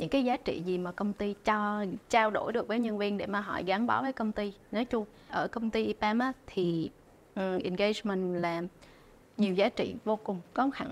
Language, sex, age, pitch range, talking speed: Vietnamese, female, 20-39, 185-230 Hz, 220 wpm